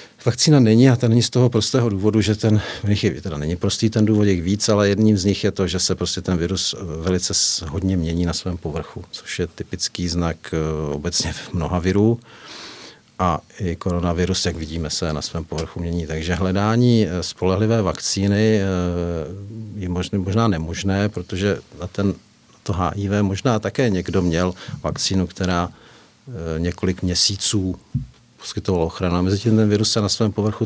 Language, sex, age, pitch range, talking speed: Czech, male, 50-69, 90-110 Hz, 170 wpm